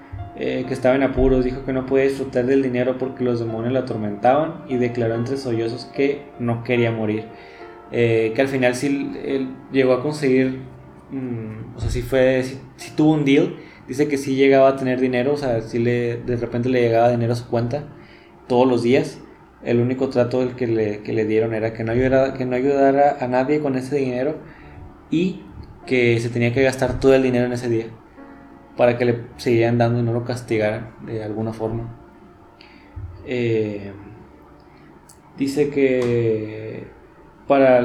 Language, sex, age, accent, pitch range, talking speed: Spanish, male, 20-39, Mexican, 115-130 Hz, 180 wpm